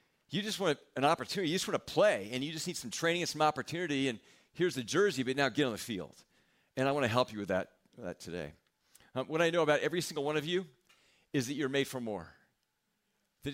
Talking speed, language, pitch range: 250 wpm, English, 120-150 Hz